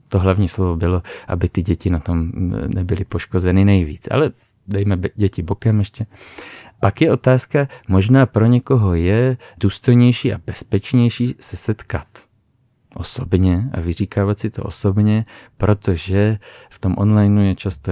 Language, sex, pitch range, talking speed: Czech, male, 90-110 Hz, 135 wpm